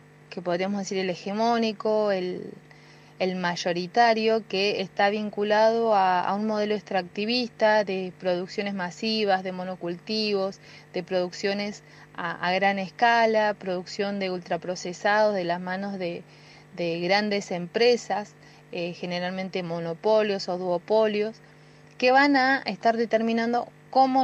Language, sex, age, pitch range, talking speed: Spanish, female, 20-39, 180-225 Hz, 120 wpm